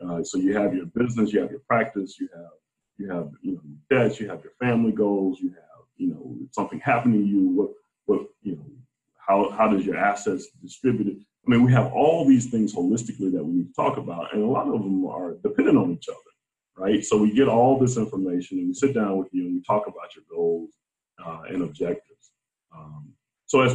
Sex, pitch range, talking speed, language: male, 105-145 Hz, 220 wpm, English